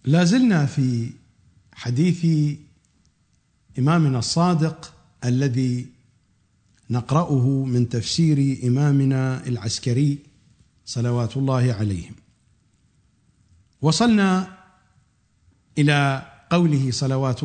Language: English